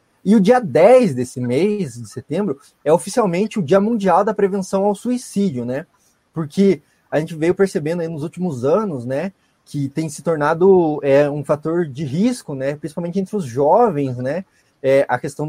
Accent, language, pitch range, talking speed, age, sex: Brazilian, Portuguese, 140-195 Hz, 170 wpm, 20-39, male